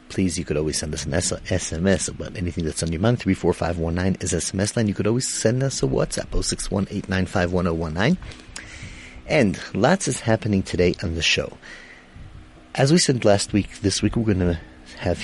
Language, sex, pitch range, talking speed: English, male, 80-100 Hz, 185 wpm